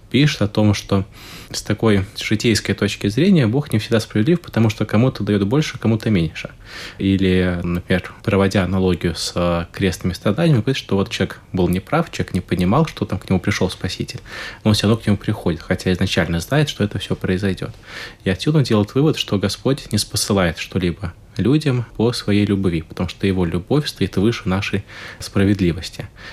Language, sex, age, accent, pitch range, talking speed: Russian, male, 20-39, native, 95-115 Hz, 175 wpm